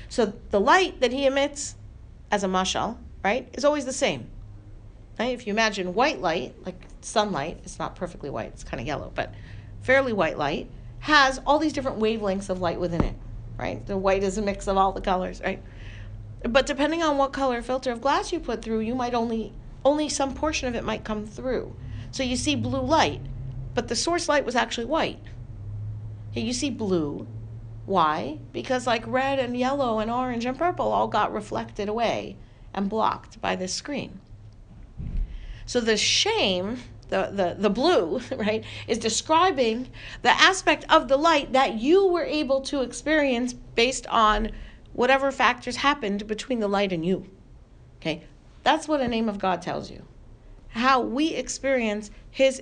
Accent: American